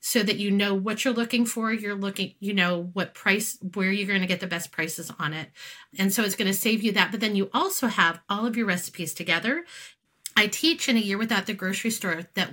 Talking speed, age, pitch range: 250 wpm, 30-49, 180-235 Hz